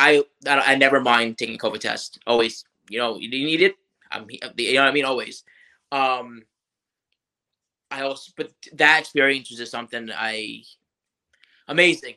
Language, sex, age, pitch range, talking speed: English, male, 20-39, 120-145 Hz, 155 wpm